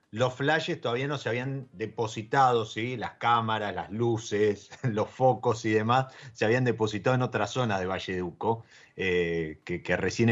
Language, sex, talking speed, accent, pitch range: Spanish, male, 170 wpm, Argentinian, 105-140 Hz